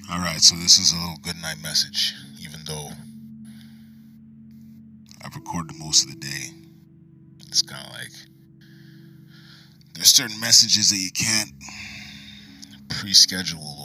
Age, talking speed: 20-39, 115 wpm